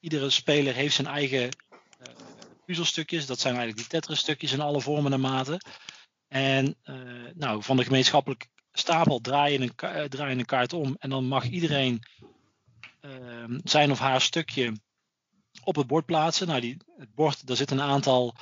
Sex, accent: male, Dutch